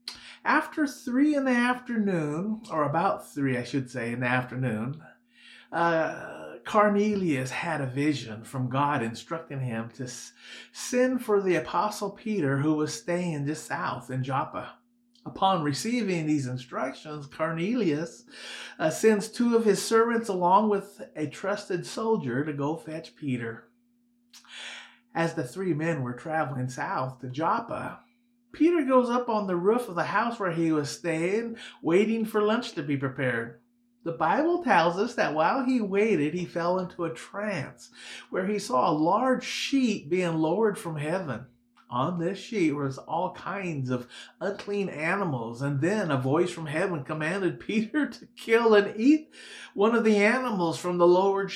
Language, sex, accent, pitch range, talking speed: English, male, American, 150-220 Hz, 155 wpm